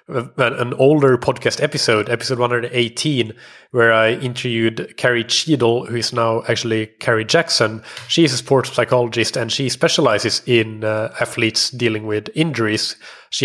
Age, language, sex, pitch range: 20-39, English, male, 115-130 Hz